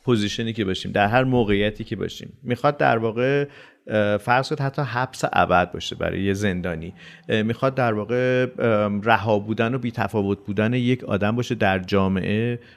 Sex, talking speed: male, 155 wpm